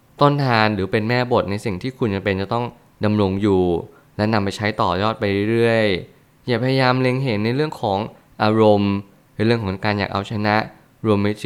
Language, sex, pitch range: Thai, male, 100-125 Hz